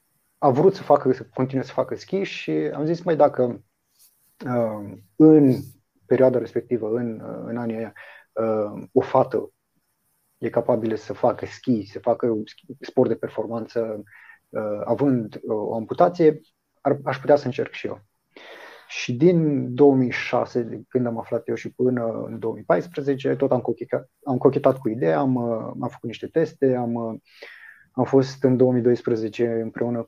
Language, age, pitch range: Romanian, 30-49, 110-130 Hz